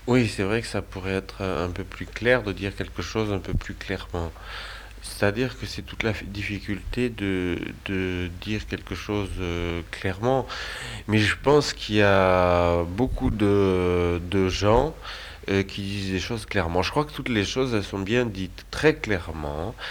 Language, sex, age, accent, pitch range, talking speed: French, male, 30-49, French, 90-105 Hz, 180 wpm